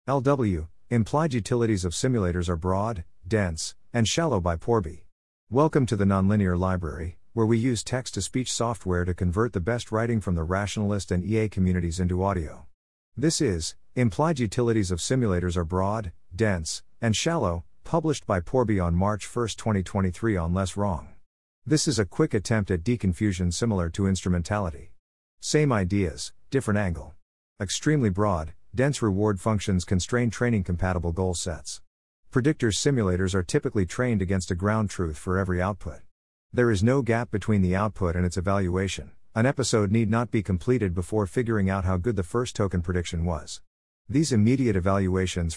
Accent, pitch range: American, 90-115 Hz